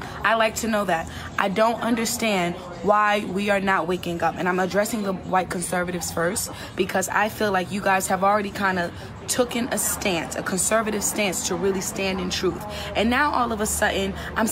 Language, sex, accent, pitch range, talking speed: English, female, American, 190-240 Hz, 205 wpm